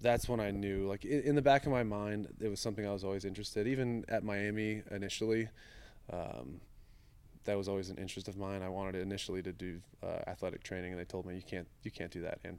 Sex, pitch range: male, 95-105 Hz